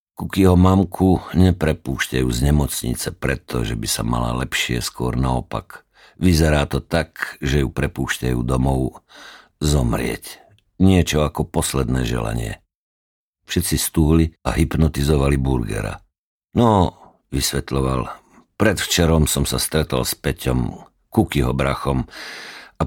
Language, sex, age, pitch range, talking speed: Slovak, male, 50-69, 65-80 Hz, 110 wpm